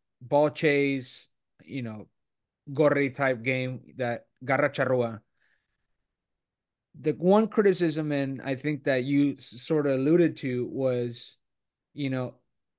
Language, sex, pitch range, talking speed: English, male, 130-155 Hz, 115 wpm